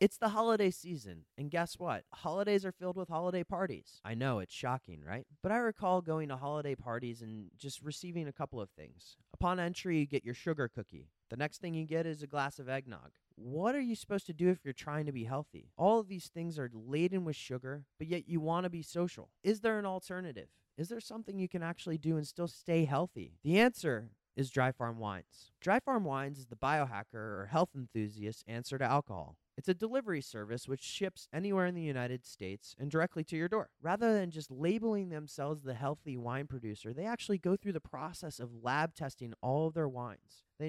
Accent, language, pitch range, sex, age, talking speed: American, English, 125-175 Hz, male, 20-39, 220 wpm